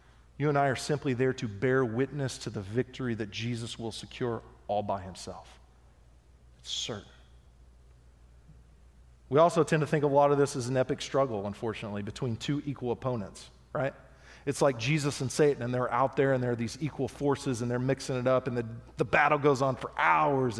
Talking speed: 200 wpm